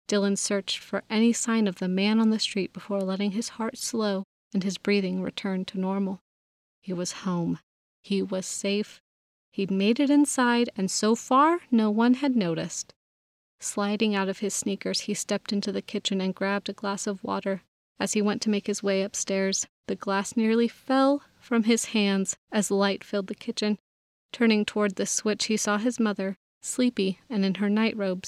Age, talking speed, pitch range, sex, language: 30-49, 185 wpm, 195-230 Hz, female, English